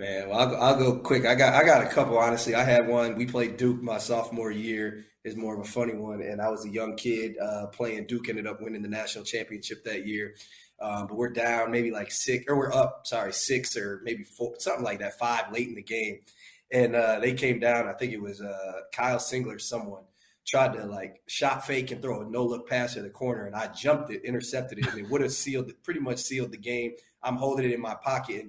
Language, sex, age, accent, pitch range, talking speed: English, male, 20-39, American, 110-125 Hz, 255 wpm